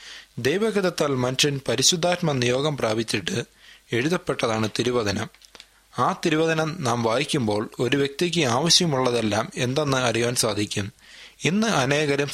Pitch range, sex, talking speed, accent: 120-160 Hz, male, 90 wpm, native